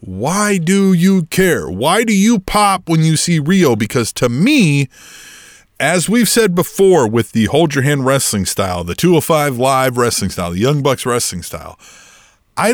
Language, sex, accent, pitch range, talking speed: English, male, American, 145-210 Hz, 175 wpm